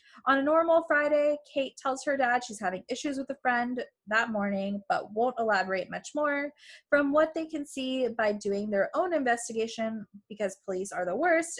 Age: 20-39